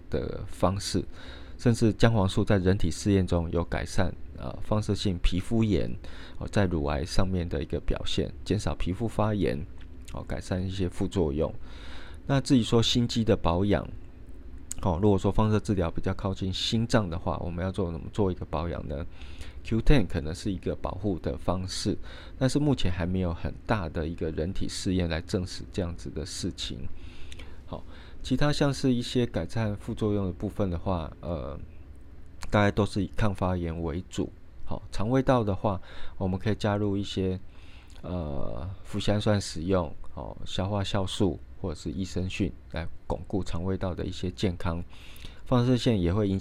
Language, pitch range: Chinese, 85-100 Hz